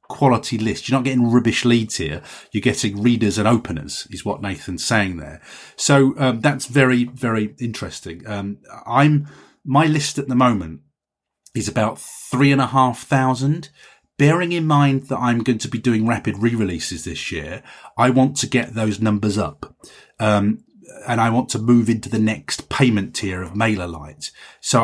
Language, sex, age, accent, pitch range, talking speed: English, male, 30-49, British, 105-135 Hz, 175 wpm